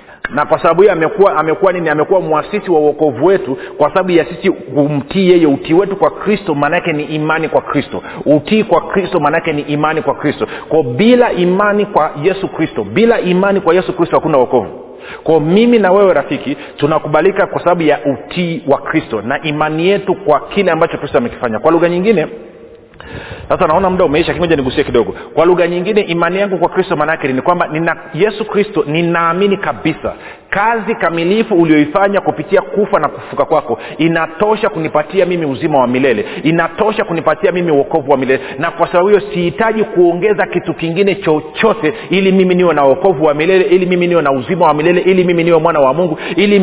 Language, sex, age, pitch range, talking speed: Swahili, male, 40-59, 155-190 Hz, 185 wpm